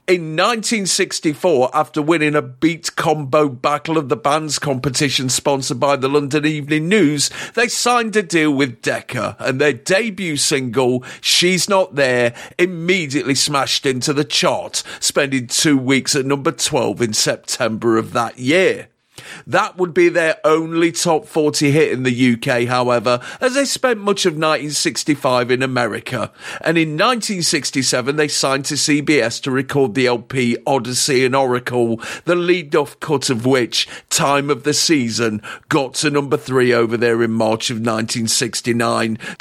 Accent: British